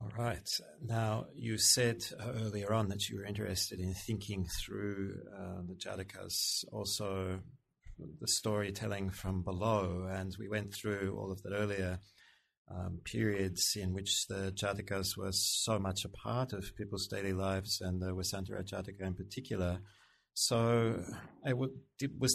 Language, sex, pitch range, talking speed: English, male, 95-110 Hz, 140 wpm